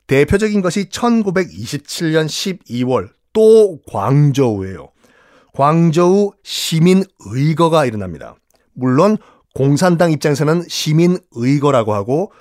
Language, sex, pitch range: Korean, male, 135-180 Hz